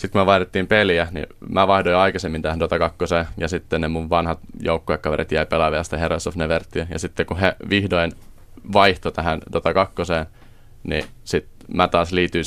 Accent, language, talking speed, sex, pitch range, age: native, Finnish, 185 wpm, male, 80-95 Hz, 20-39